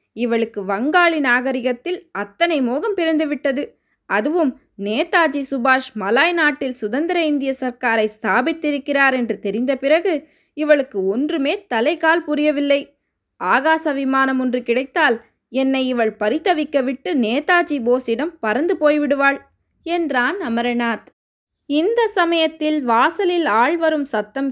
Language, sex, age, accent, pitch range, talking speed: Tamil, female, 20-39, native, 235-310 Hz, 100 wpm